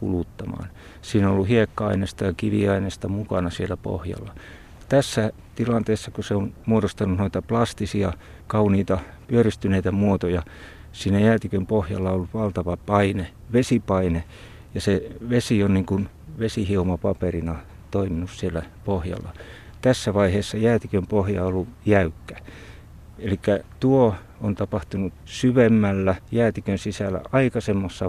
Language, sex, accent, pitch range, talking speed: Finnish, male, native, 90-110 Hz, 115 wpm